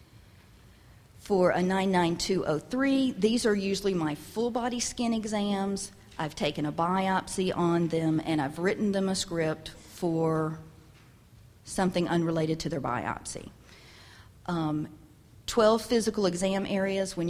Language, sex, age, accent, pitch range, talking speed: English, female, 40-59, American, 160-195 Hz, 120 wpm